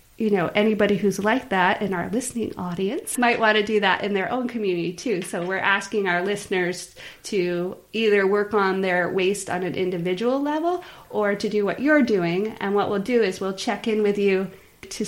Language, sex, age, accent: English, female, 30-49, American